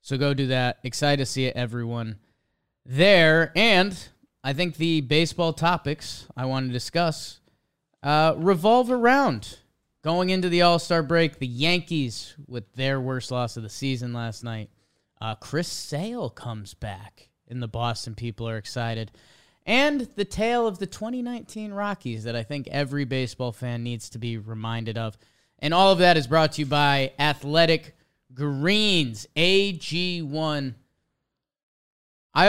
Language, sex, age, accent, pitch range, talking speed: English, male, 20-39, American, 125-175 Hz, 150 wpm